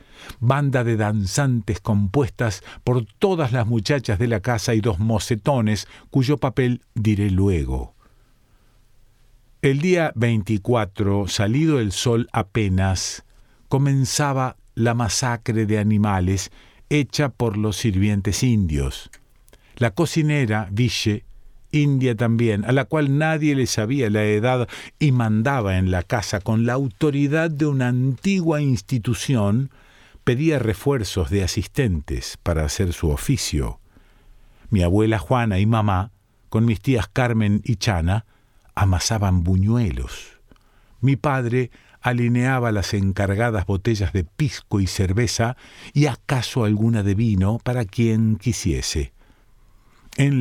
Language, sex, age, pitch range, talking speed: Spanish, male, 50-69, 100-125 Hz, 120 wpm